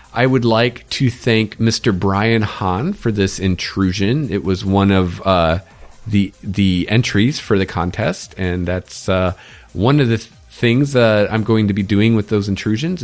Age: 40-59